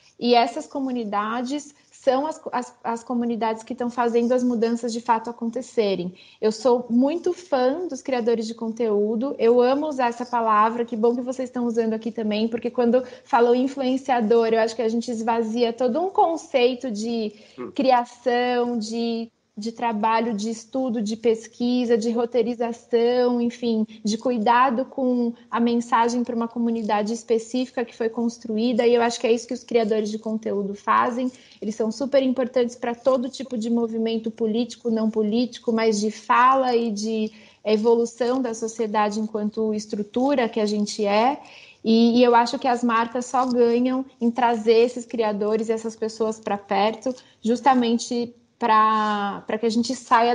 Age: 20-39